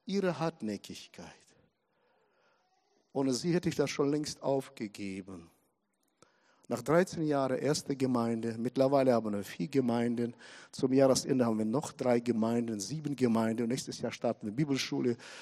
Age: 60-79